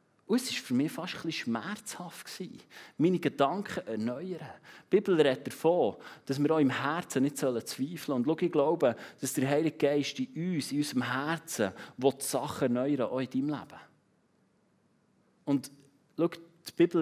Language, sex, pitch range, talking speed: German, male, 120-165 Hz, 165 wpm